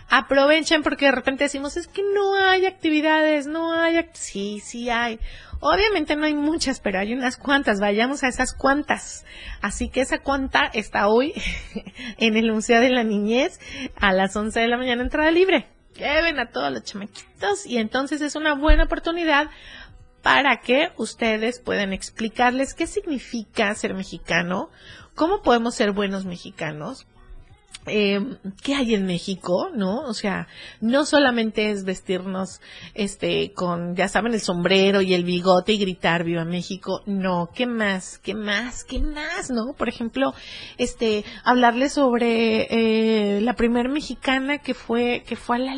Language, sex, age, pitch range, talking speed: Spanish, female, 30-49, 200-275 Hz, 160 wpm